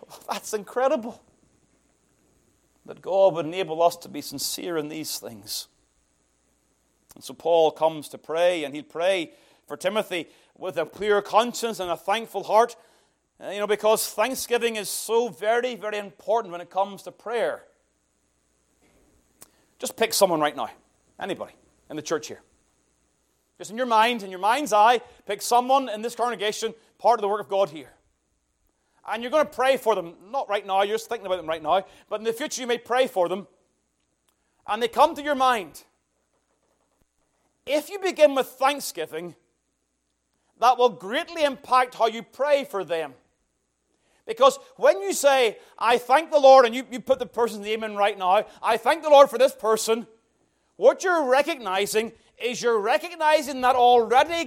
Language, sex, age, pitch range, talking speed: English, male, 30-49, 185-260 Hz, 170 wpm